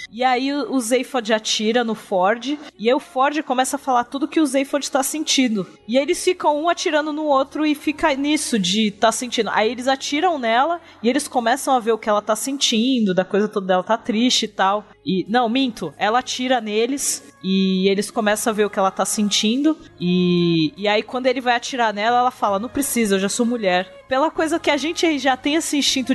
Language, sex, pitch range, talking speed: Portuguese, female, 190-265 Hz, 225 wpm